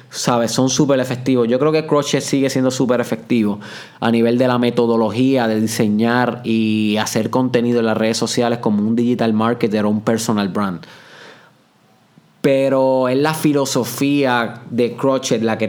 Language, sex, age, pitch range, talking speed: Spanish, male, 20-39, 115-135 Hz, 160 wpm